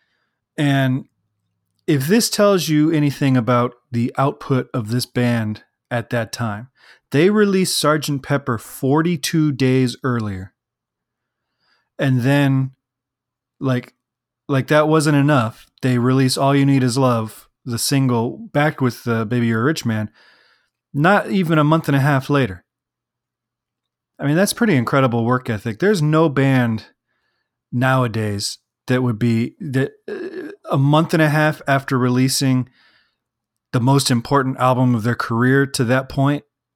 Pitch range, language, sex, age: 120-145 Hz, English, male, 30-49